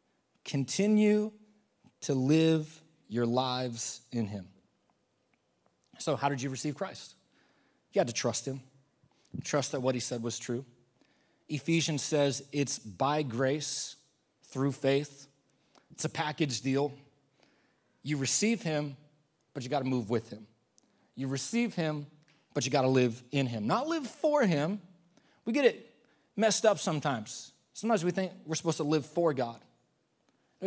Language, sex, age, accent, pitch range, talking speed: English, male, 30-49, American, 130-175 Hz, 150 wpm